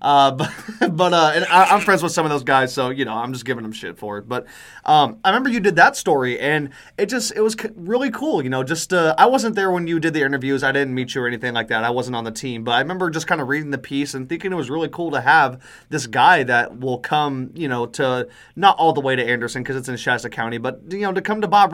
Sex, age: male, 20-39